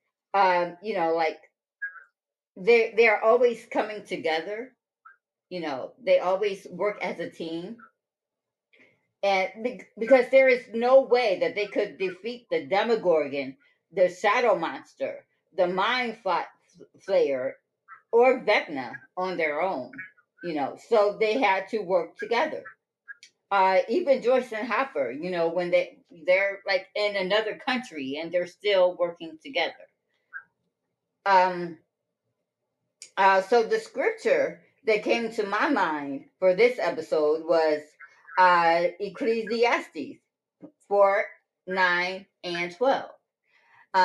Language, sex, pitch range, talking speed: English, female, 175-235 Hz, 120 wpm